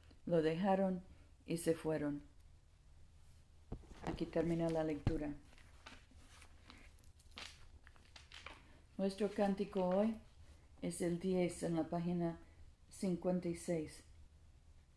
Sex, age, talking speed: female, 50-69, 75 wpm